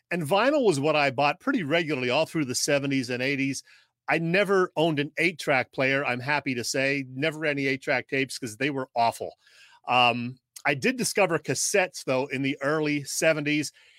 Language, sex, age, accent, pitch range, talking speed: English, male, 40-59, American, 135-175 Hz, 180 wpm